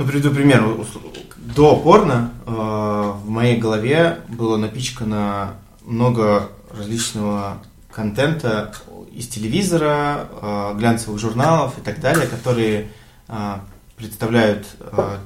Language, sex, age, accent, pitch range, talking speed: Russian, male, 20-39, native, 100-115 Hz, 100 wpm